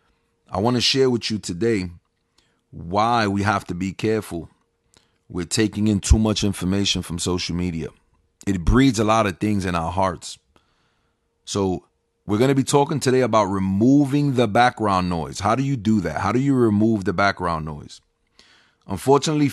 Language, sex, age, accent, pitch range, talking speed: English, male, 30-49, American, 95-125 Hz, 170 wpm